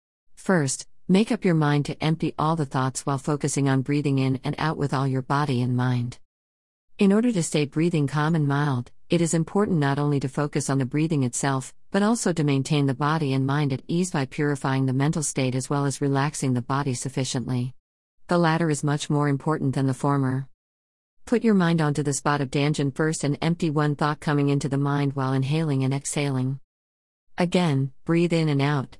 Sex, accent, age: female, American, 50-69